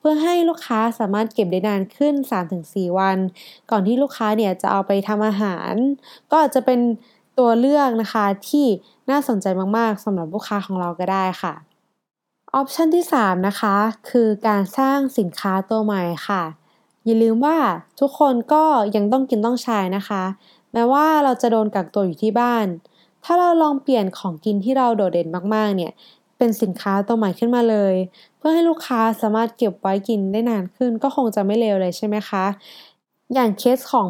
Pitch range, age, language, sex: 195-255 Hz, 20-39, Thai, female